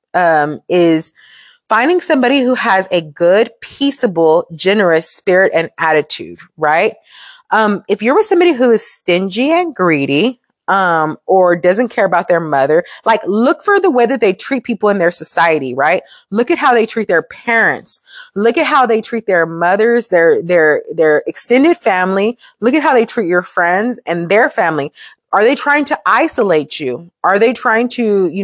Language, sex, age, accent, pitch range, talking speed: English, female, 30-49, American, 180-260 Hz, 175 wpm